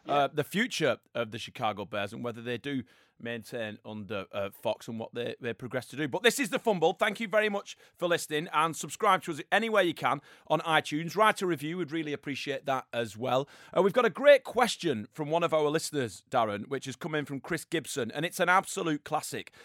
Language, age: English, 30-49